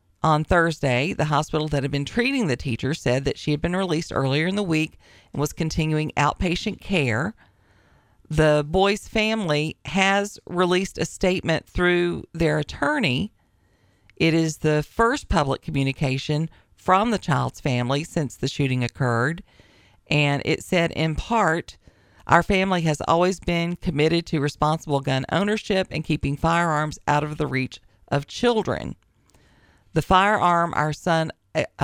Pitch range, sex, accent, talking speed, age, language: 140-180 Hz, female, American, 145 wpm, 40-59, English